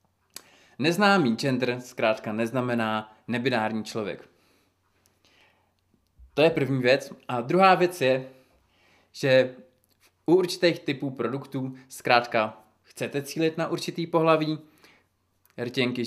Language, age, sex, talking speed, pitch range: Czech, 20-39, male, 95 wpm, 110-150 Hz